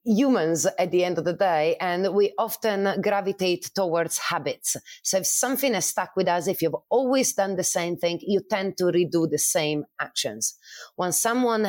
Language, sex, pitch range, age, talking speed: English, female, 170-210 Hz, 30-49, 190 wpm